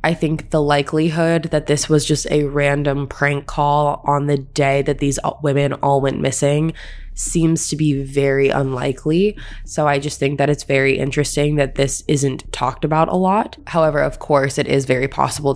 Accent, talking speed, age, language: American, 185 wpm, 20-39, English